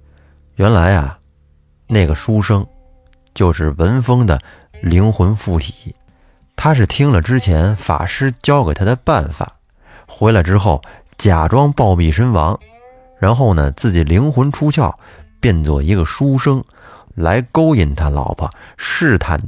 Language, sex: Chinese, male